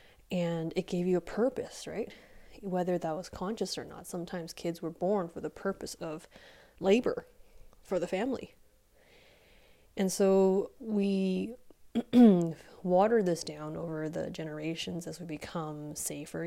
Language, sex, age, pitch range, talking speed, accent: English, female, 20-39, 155-185 Hz, 140 wpm, American